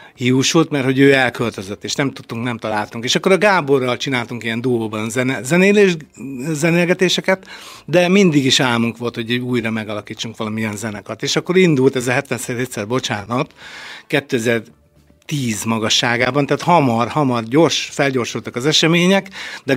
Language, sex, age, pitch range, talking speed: Hungarian, male, 60-79, 115-145 Hz, 140 wpm